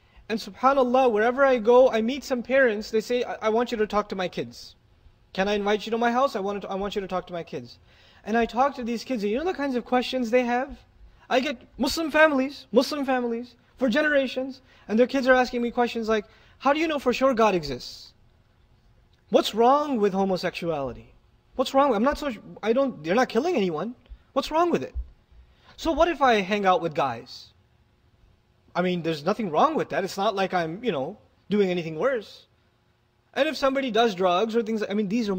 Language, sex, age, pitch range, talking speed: English, male, 20-39, 165-245 Hz, 220 wpm